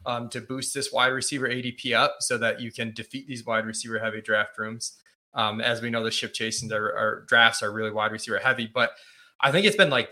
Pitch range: 110-135 Hz